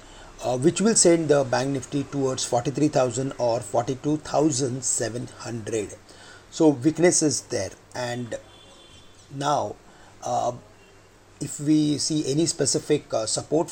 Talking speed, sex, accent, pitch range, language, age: 110 wpm, male, Indian, 115-145 Hz, English, 30-49